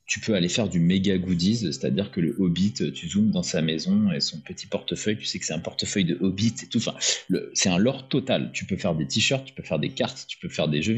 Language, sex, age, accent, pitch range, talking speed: French, male, 30-49, French, 85-120 Hz, 280 wpm